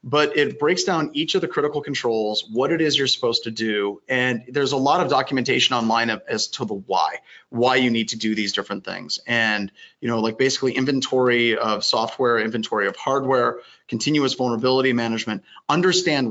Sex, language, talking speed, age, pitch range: male, English, 185 wpm, 30-49, 115-140 Hz